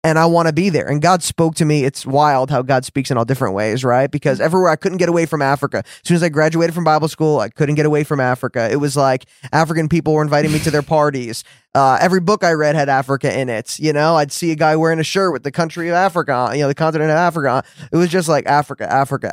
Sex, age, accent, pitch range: male, 20-39, American, 130-160 Hz